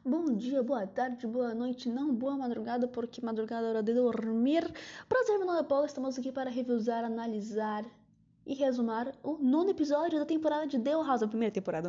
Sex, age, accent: female, 10-29, Brazilian